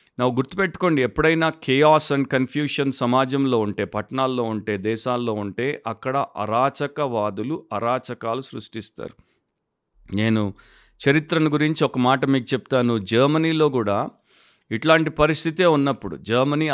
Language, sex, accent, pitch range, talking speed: Telugu, male, native, 115-140 Hz, 105 wpm